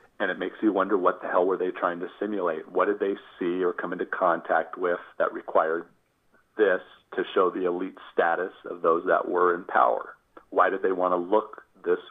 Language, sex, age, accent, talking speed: English, male, 40-59, American, 215 wpm